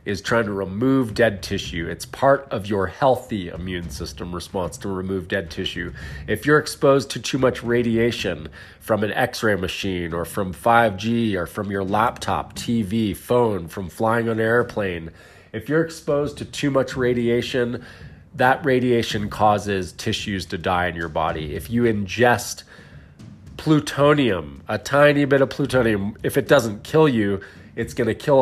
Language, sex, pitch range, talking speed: English, male, 90-115 Hz, 160 wpm